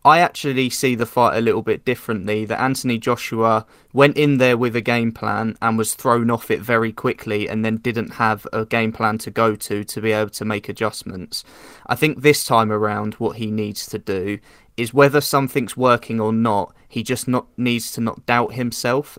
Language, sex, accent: English, male, British